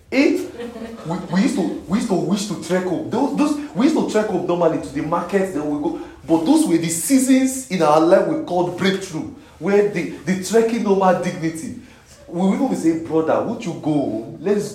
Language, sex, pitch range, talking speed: English, male, 160-215 Hz, 215 wpm